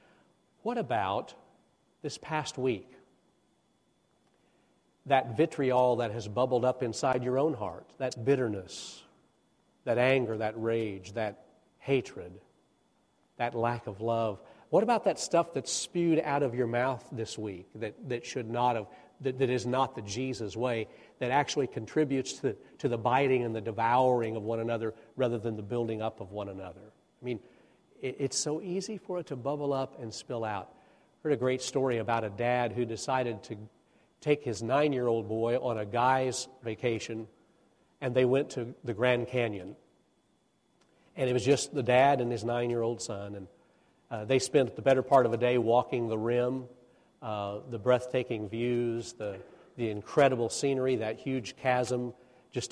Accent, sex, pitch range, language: American, male, 115-130 Hz, English